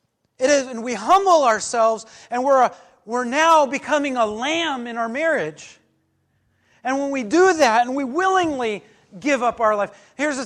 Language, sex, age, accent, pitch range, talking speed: English, male, 40-59, American, 145-225 Hz, 180 wpm